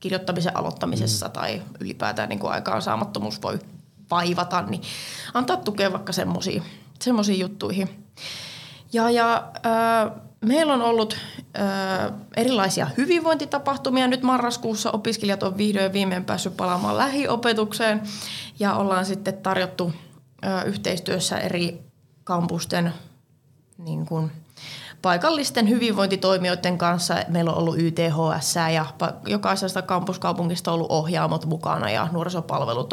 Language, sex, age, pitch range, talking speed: Finnish, female, 20-39, 165-210 Hz, 110 wpm